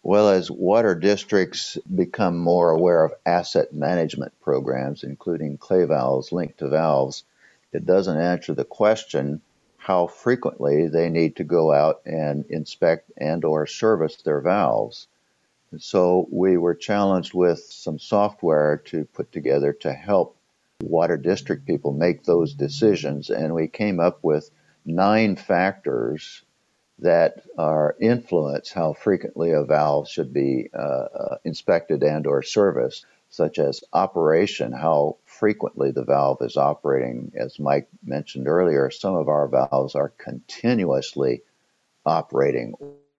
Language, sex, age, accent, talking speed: English, male, 50-69, American, 135 wpm